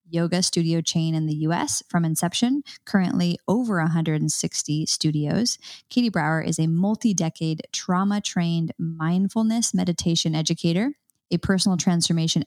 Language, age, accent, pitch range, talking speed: English, 20-39, American, 165-190 Hz, 125 wpm